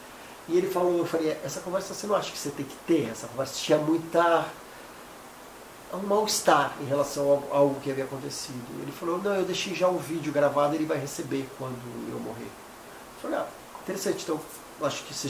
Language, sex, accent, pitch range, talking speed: Portuguese, male, Brazilian, 155-210 Hz, 220 wpm